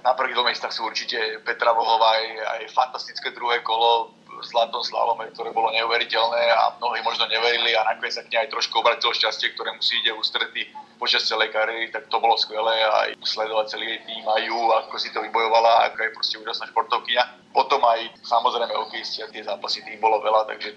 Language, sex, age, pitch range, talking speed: Slovak, male, 30-49, 110-115 Hz, 195 wpm